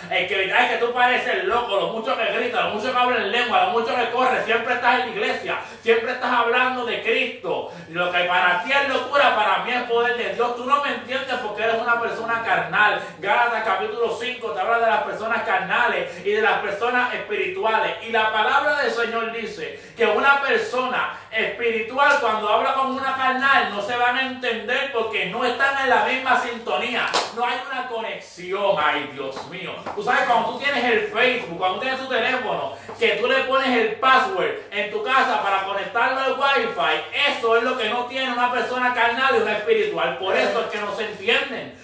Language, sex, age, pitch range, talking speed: Spanish, male, 30-49, 225-260 Hz, 205 wpm